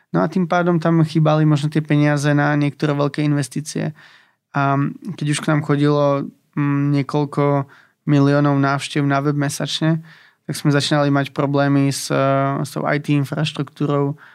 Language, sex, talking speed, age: Slovak, male, 145 wpm, 20-39